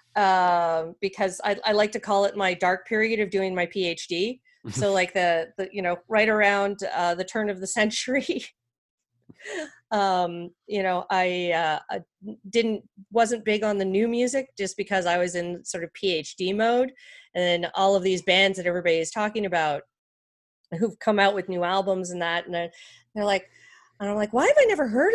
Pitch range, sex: 175-220 Hz, female